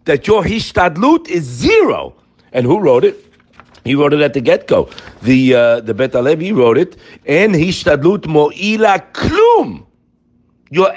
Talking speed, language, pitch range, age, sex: 150 wpm, English, 130-185 Hz, 50-69, male